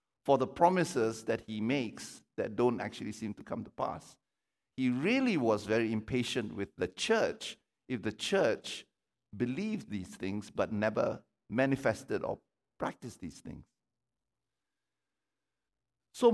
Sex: male